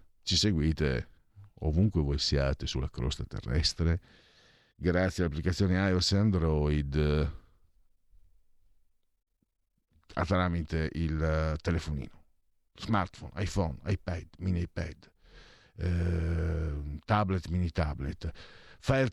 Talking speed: 75 wpm